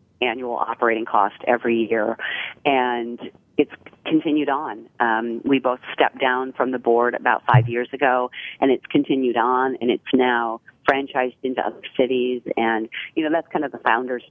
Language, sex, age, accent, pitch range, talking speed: English, female, 40-59, American, 115-125 Hz, 170 wpm